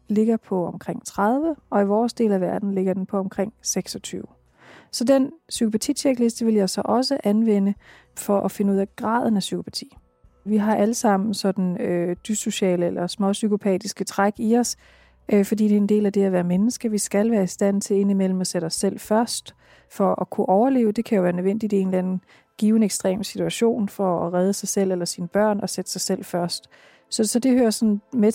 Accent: native